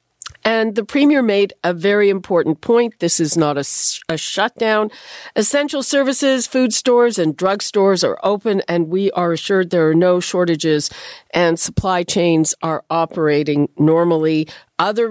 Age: 50-69